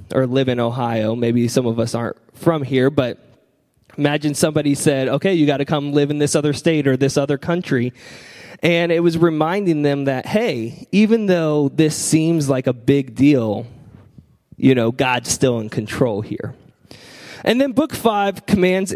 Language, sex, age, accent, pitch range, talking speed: English, male, 20-39, American, 125-170 Hz, 175 wpm